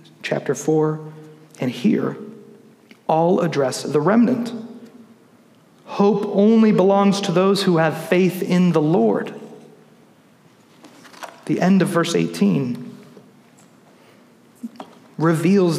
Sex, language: male, English